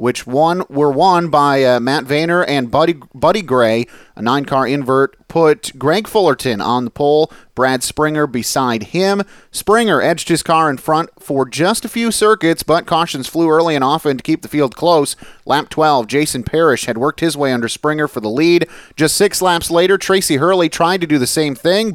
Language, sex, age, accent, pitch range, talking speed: English, male, 30-49, American, 135-175 Hz, 195 wpm